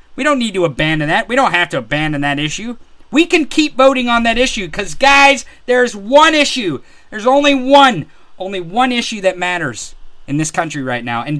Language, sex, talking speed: English, male, 205 wpm